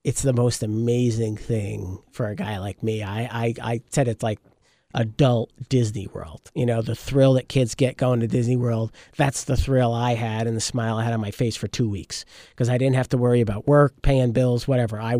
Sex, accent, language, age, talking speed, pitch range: male, American, English, 50-69, 230 wpm, 115-130 Hz